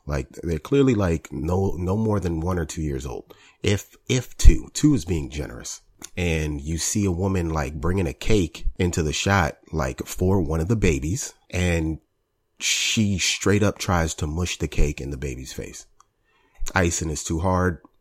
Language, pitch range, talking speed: English, 75-95 Hz, 185 wpm